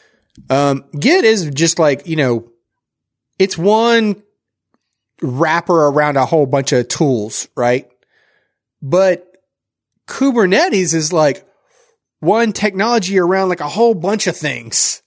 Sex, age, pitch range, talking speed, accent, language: male, 30-49, 130-185 Hz, 120 wpm, American, English